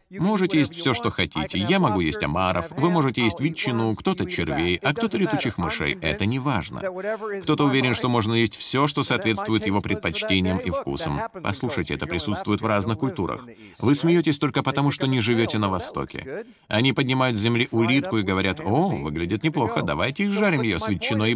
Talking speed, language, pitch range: 180 wpm, Russian, 100-150 Hz